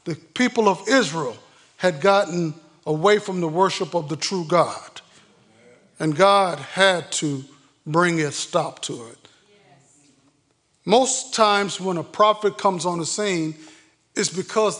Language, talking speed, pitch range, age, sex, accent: English, 140 wpm, 155-200 Hz, 50-69, male, American